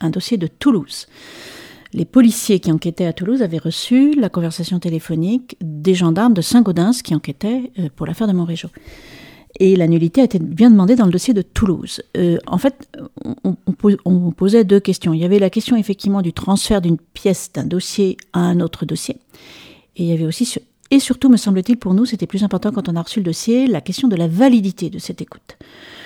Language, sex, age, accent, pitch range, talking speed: French, female, 40-59, French, 170-225 Hz, 205 wpm